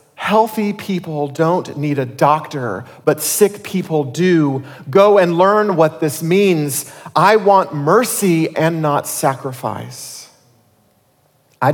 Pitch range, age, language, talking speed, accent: 135-180 Hz, 40-59, English, 120 wpm, American